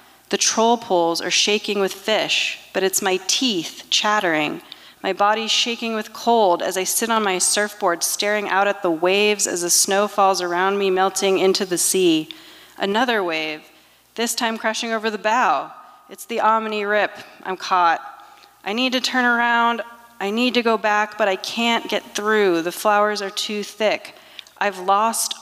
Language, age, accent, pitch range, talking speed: English, 30-49, American, 190-225 Hz, 175 wpm